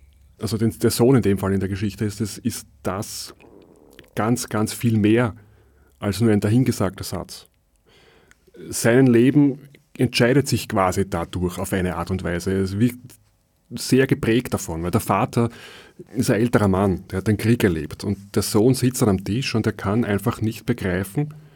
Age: 30-49